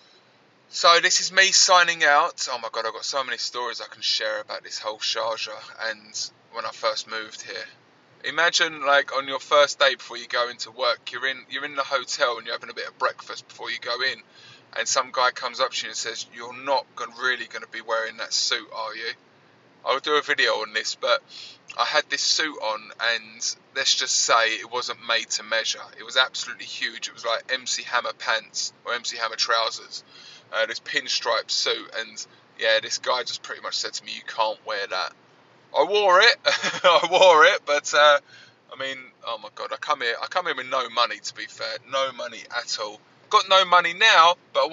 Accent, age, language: British, 20-39, English